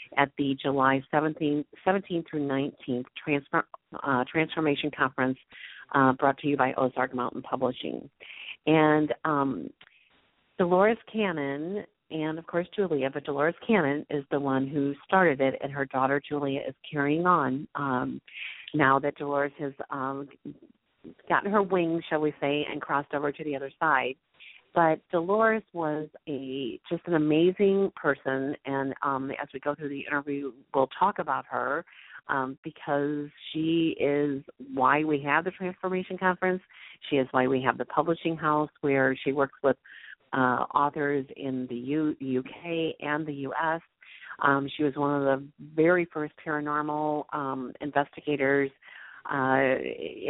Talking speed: 150 wpm